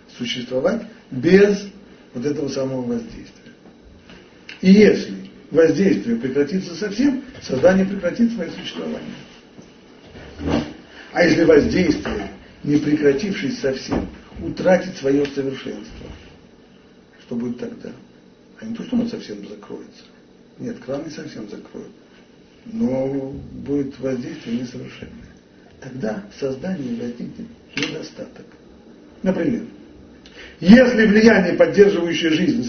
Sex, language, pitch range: male, Russian, 140-220 Hz